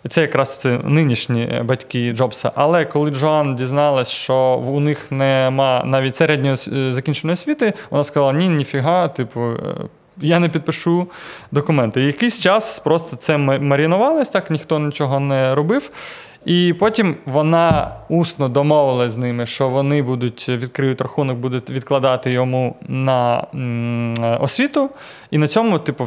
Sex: male